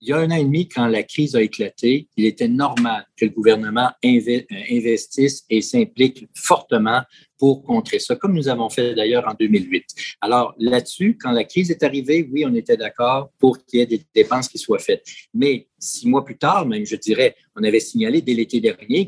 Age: 50-69